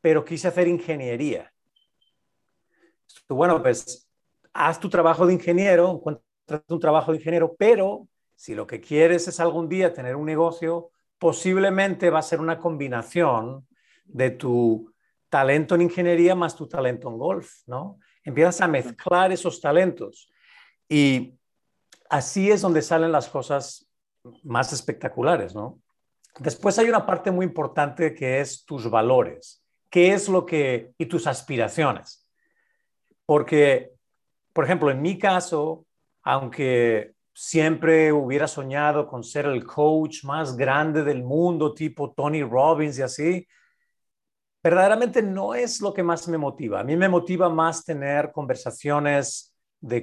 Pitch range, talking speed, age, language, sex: 140-175 Hz, 140 wpm, 50-69, English, male